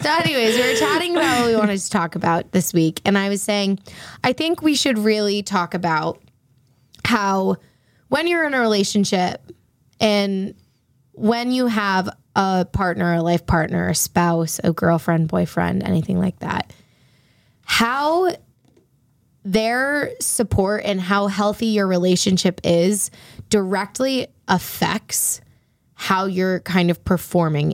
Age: 20-39